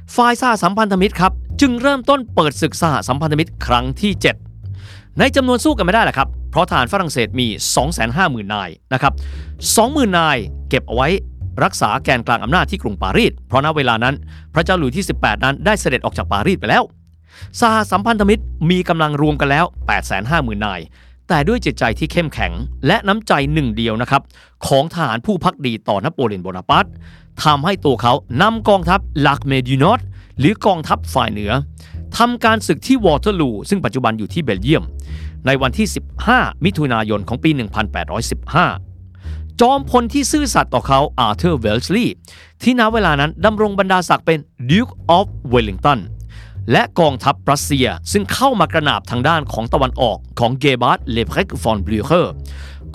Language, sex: Thai, male